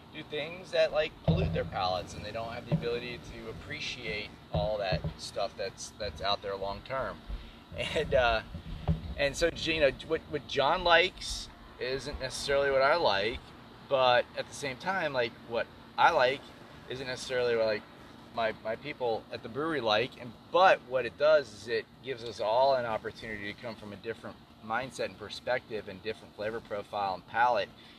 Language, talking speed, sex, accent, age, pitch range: English, 180 wpm, male, American, 30-49, 90-130 Hz